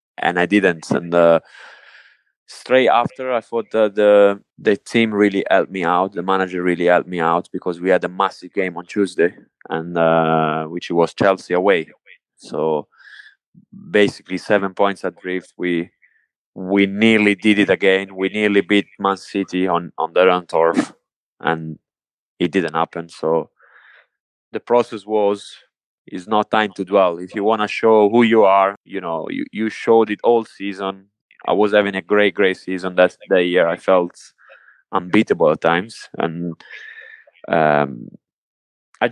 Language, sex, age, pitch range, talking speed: English, male, 20-39, 90-105 Hz, 160 wpm